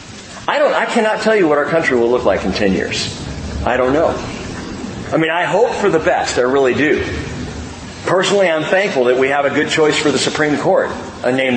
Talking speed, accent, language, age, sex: 225 wpm, American, English, 40-59, male